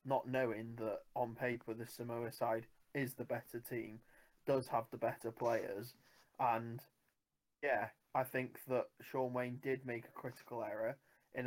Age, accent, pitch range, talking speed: 20-39, British, 120-130 Hz, 155 wpm